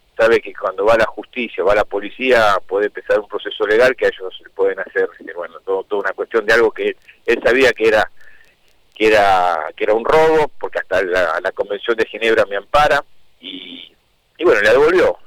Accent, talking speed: Argentinian, 200 wpm